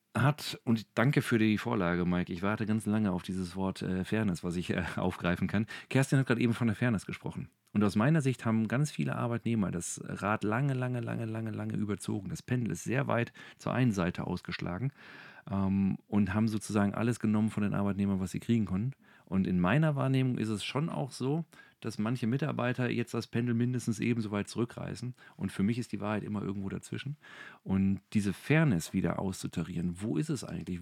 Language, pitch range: German, 100-125 Hz